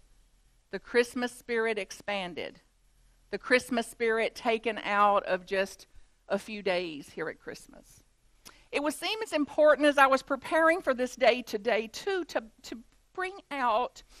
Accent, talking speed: American, 150 wpm